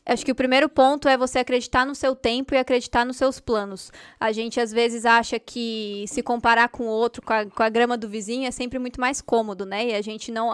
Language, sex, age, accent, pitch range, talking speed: Portuguese, female, 10-29, Brazilian, 235-275 Hz, 245 wpm